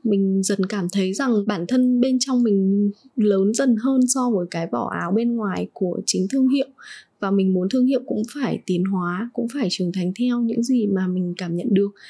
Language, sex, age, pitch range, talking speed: Vietnamese, female, 20-39, 190-250 Hz, 225 wpm